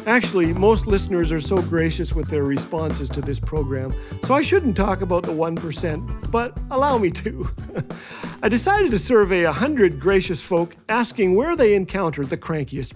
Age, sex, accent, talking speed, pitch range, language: 40-59, male, American, 165 wpm, 155-220 Hz, English